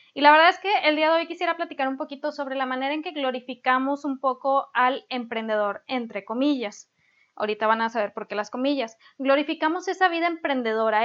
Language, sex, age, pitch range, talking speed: Spanish, female, 20-39, 235-290 Hz, 200 wpm